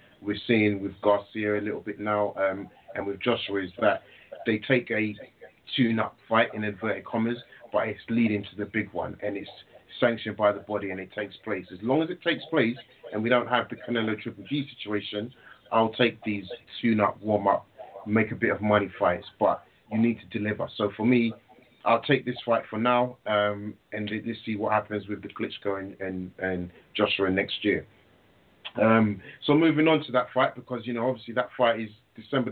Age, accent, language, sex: 30-49, British, English, male